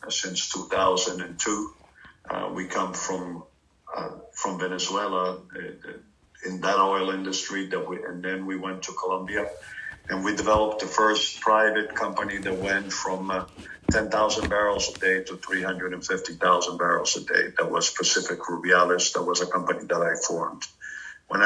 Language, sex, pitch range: English, male, 95-105 Hz